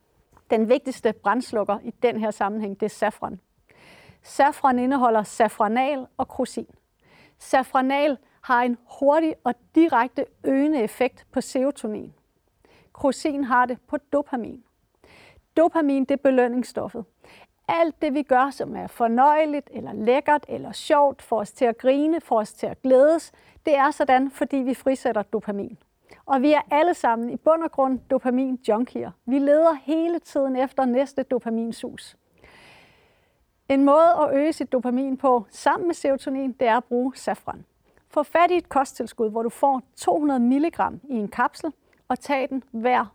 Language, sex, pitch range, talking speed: Danish, female, 235-285 Hz, 155 wpm